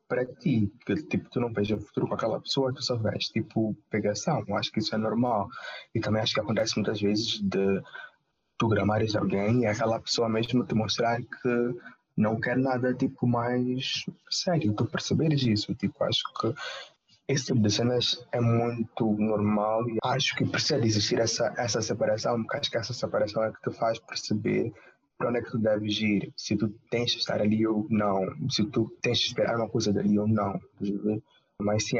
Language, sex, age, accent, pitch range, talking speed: Portuguese, male, 20-39, Brazilian, 105-120 Hz, 200 wpm